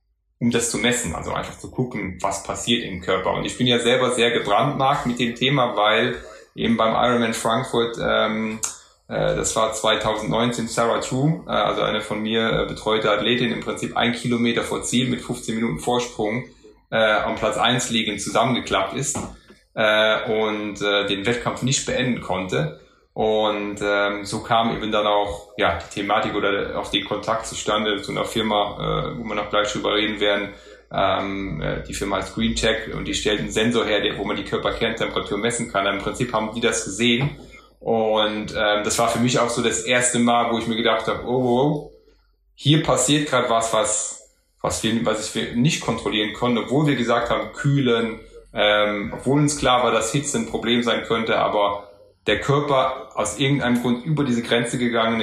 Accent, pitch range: German, 105-120 Hz